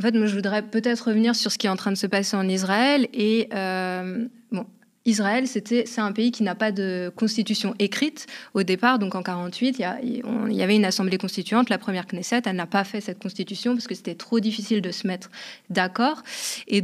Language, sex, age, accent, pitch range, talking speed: French, female, 20-39, French, 200-245 Hz, 235 wpm